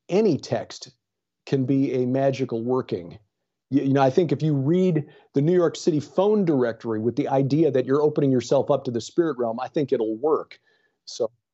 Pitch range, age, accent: 120-150 Hz, 40-59, American